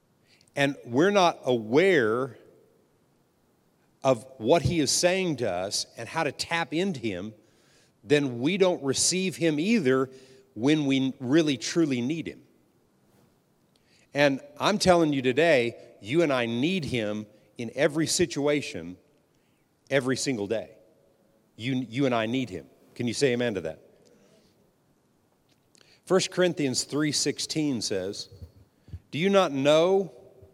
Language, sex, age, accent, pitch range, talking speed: English, male, 50-69, American, 120-155 Hz, 130 wpm